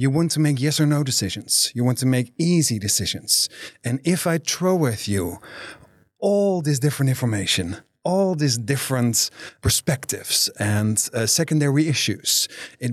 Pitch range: 110-150 Hz